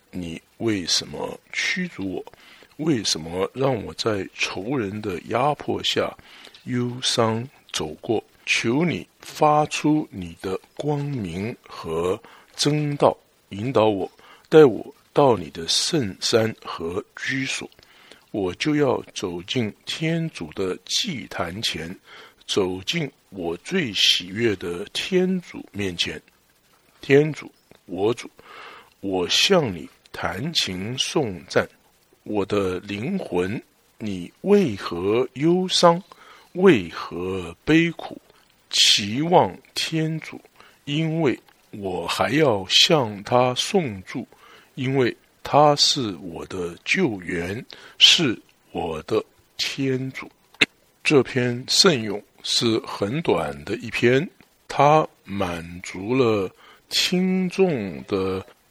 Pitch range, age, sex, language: 95-155 Hz, 60-79, male, English